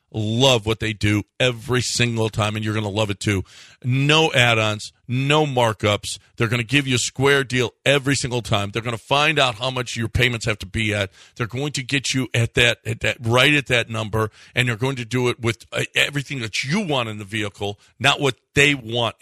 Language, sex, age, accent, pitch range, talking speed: English, male, 50-69, American, 110-150 Hz, 230 wpm